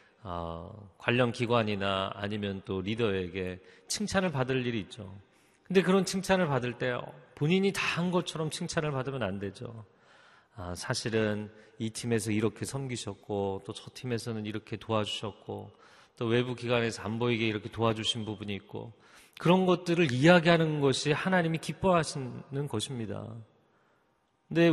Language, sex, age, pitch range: Korean, male, 40-59, 110-155 Hz